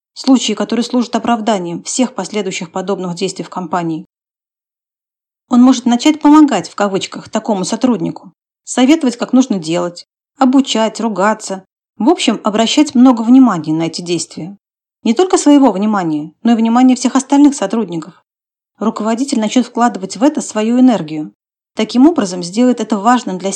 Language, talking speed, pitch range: Russian, 140 wpm, 190-255 Hz